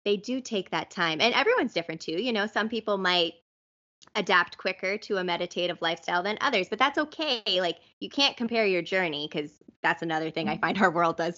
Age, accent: 20-39, American